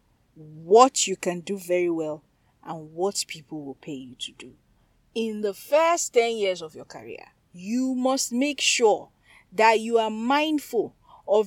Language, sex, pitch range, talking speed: English, female, 185-260 Hz, 160 wpm